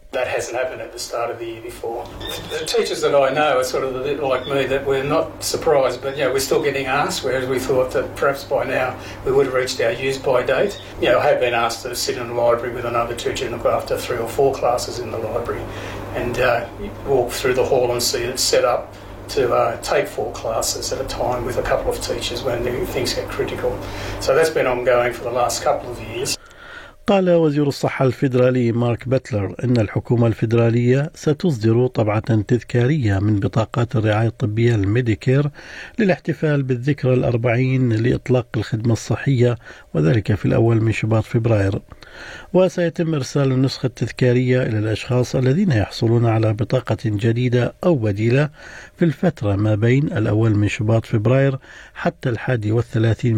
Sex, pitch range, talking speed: male, 115-145 Hz, 185 wpm